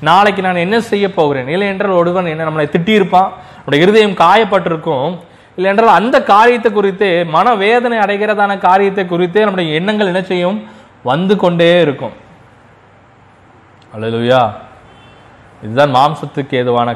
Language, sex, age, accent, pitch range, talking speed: Tamil, male, 20-39, native, 145-205 Hz, 65 wpm